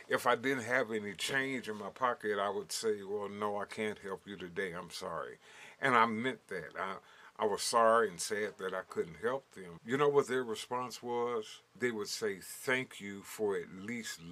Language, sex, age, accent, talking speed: English, male, 50-69, American, 210 wpm